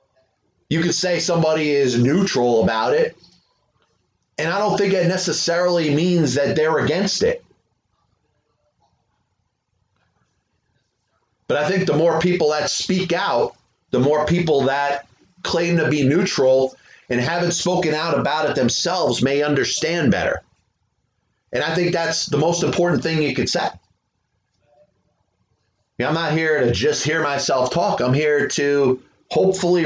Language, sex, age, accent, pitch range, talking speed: English, male, 30-49, American, 120-170 Hz, 145 wpm